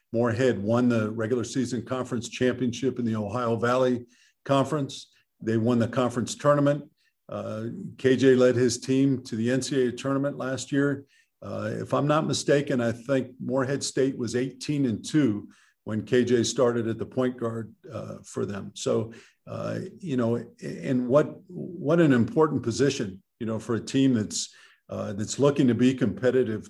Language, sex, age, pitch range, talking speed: English, male, 50-69, 115-135 Hz, 165 wpm